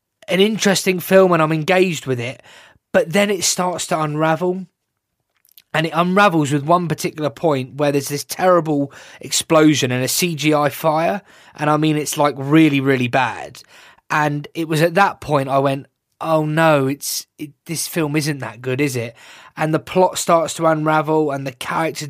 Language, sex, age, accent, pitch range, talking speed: English, male, 20-39, British, 140-170 Hz, 180 wpm